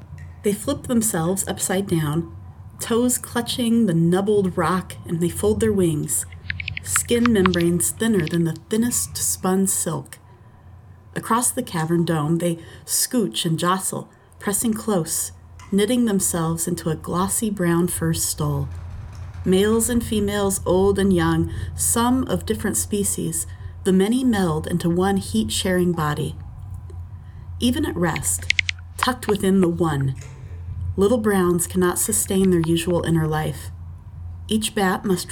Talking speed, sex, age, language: 130 wpm, female, 30-49, English